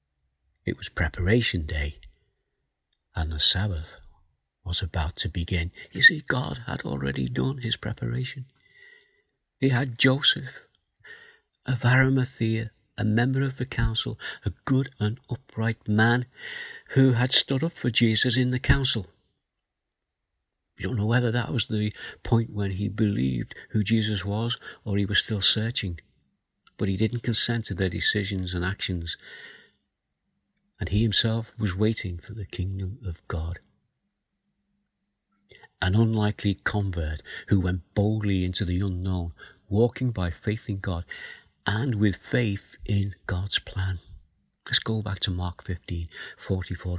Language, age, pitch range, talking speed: English, 50-69, 90-120 Hz, 140 wpm